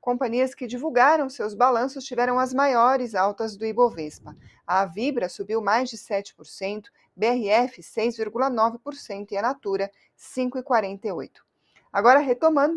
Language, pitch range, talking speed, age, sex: Portuguese, 220-265 Hz, 120 wpm, 30-49, female